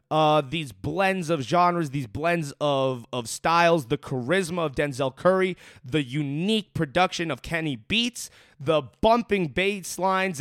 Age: 20-39